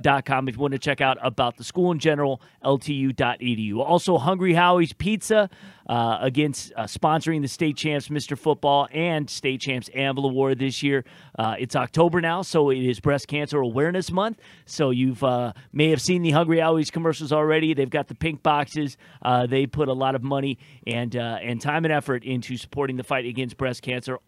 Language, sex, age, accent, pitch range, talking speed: English, male, 30-49, American, 125-155 Hz, 205 wpm